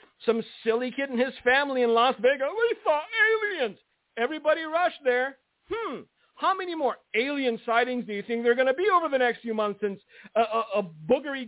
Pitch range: 195-275 Hz